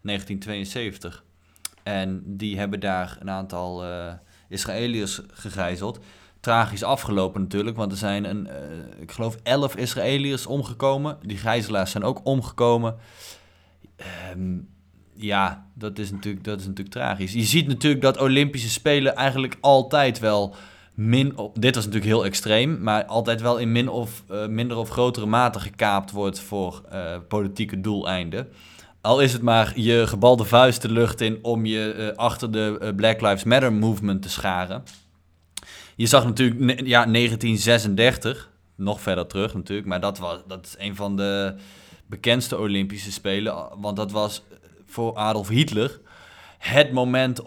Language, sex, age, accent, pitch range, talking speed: Dutch, male, 20-39, Dutch, 95-120 Hz, 150 wpm